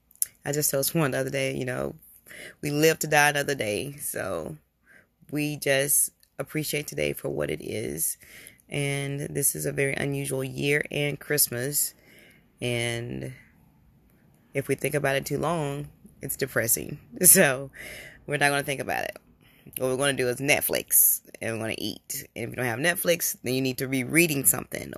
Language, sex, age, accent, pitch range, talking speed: English, female, 20-39, American, 130-150 Hz, 185 wpm